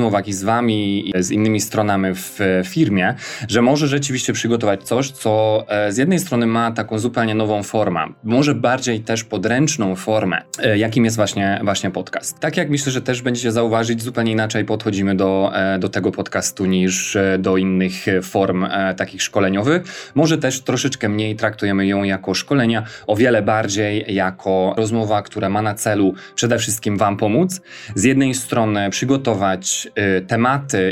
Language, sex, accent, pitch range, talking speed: Polish, male, native, 100-120 Hz, 155 wpm